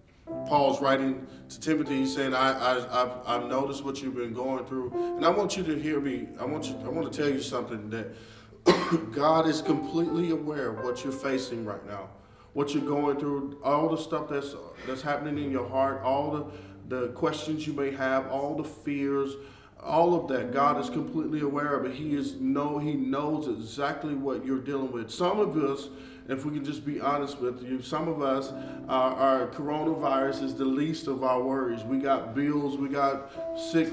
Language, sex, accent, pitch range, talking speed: English, male, American, 130-150 Hz, 200 wpm